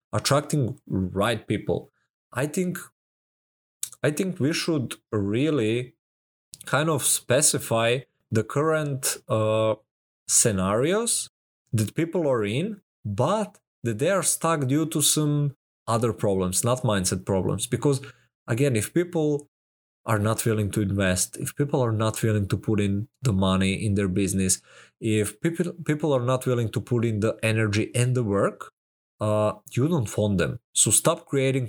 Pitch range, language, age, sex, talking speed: 105-145 Hz, English, 20-39, male, 150 wpm